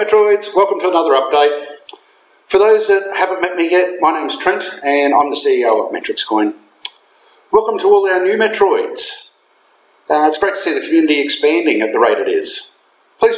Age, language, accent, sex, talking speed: 50-69, English, Australian, male, 195 wpm